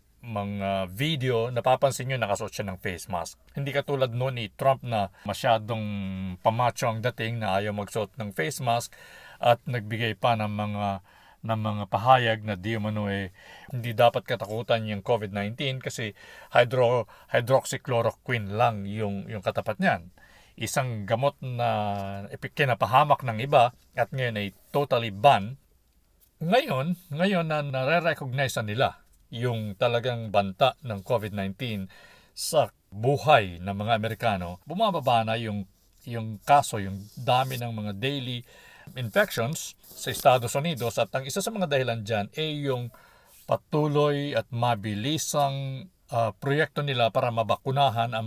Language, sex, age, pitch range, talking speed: Filipino, male, 50-69, 105-135 Hz, 140 wpm